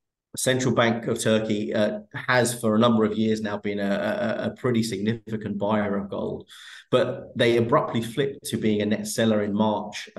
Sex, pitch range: male, 105-115 Hz